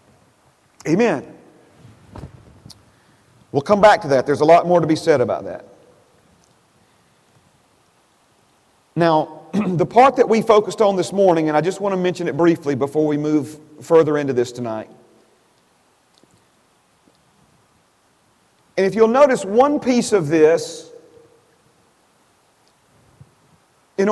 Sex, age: male, 40-59